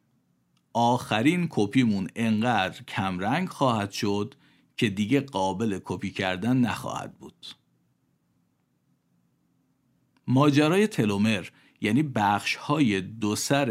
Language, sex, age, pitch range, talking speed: Persian, male, 50-69, 105-135 Hz, 90 wpm